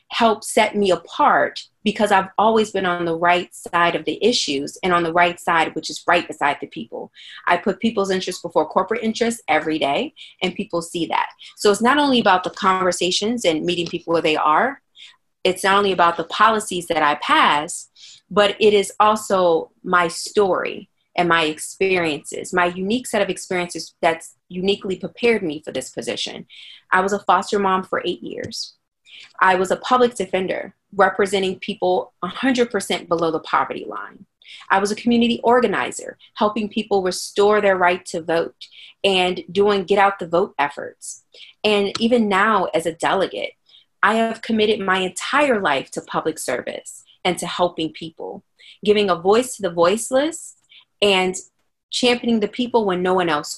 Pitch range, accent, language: 175-220 Hz, American, English